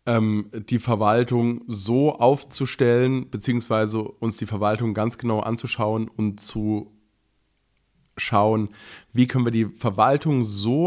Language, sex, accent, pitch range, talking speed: German, male, German, 105-130 Hz, 110 wpm